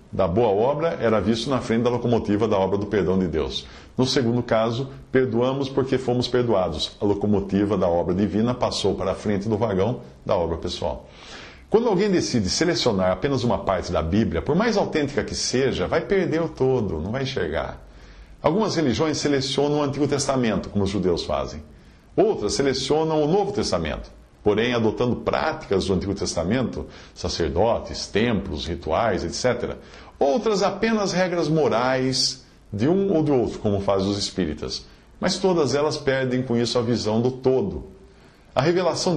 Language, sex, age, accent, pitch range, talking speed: English, male, 50-69, Brazilian, 100-145 Hz, 165 wpm